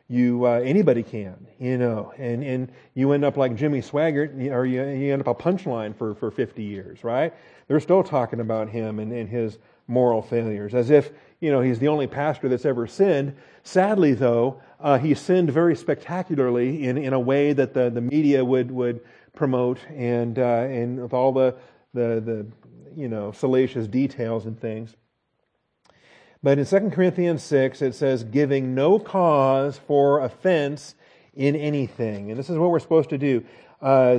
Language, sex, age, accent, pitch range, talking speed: English, male, 40-59, American, 125-150 Hz, 180 wpm